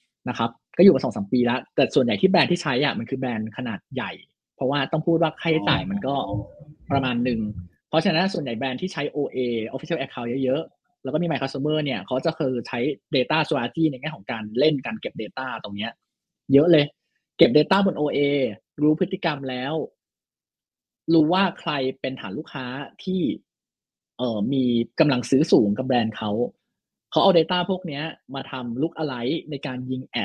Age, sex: 20-39, male